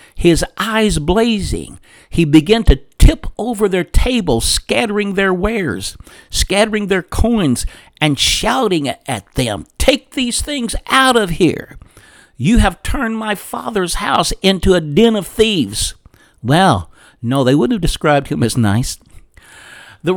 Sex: male